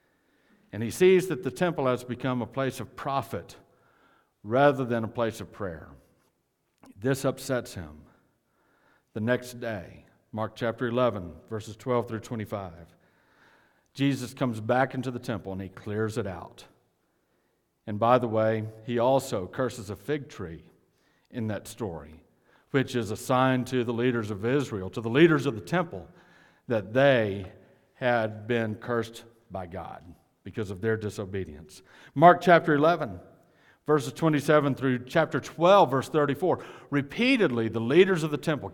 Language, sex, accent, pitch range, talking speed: English, male, American, 110-155 Hz, 150 wpm